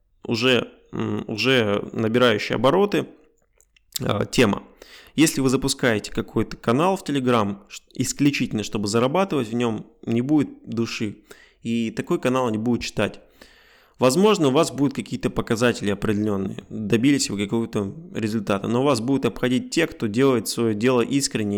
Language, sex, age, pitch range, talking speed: Russian, male, 20-39, 110-135 Hz, 135 wpm